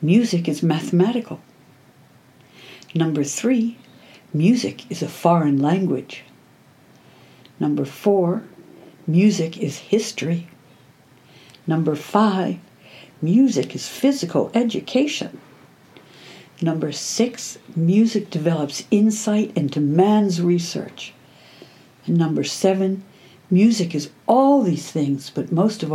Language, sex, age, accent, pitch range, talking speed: English, female, 60-79, American, 150-205 Hz, 90 wpm